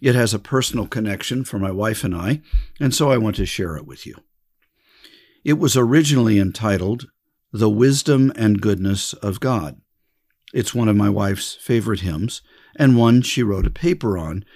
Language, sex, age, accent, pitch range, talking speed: English, male, 50-69, American, 100-130 Hz, 175 wpm